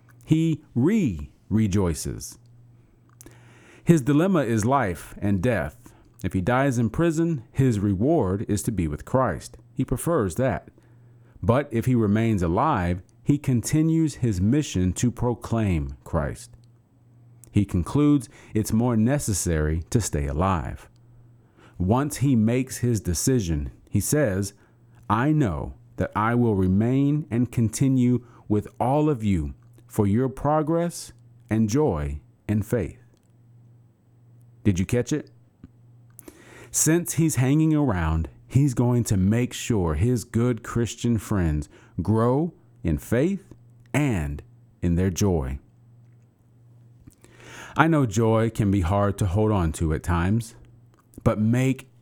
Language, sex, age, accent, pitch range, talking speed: English, male, 40-59, American, 105-125 Hz, 125 wpm